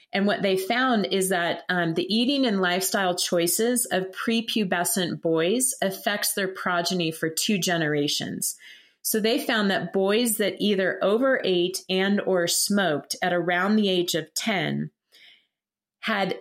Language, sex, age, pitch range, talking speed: English, female, 30-49, 175-215 Hz, 145 wpm